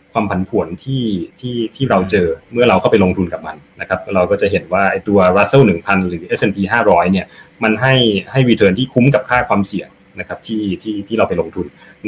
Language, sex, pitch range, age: Thai, male, 95-115 Hz, 20-39